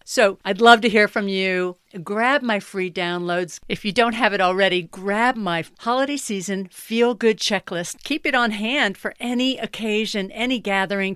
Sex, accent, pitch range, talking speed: female, American, 195-245 Hz, 175 wpm